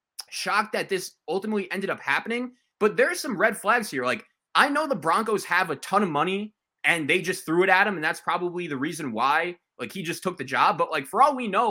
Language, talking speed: English, 245 wpm